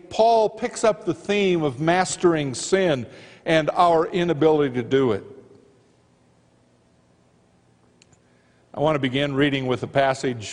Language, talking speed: English, 125 wpm